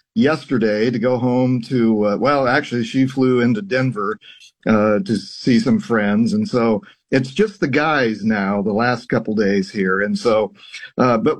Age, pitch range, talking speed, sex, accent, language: 50-69, 120-150 Hz, 175 wpm, male, American, English